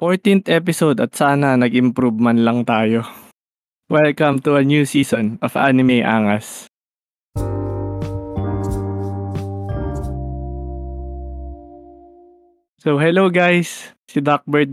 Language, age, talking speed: Filipino, 20-39, 85 wpm